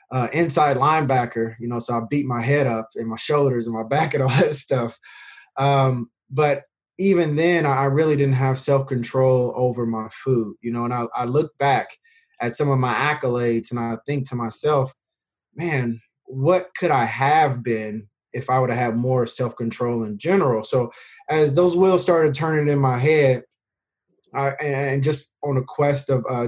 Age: 20-39